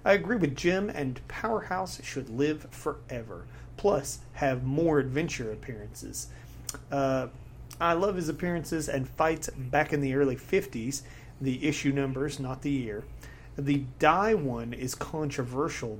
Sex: male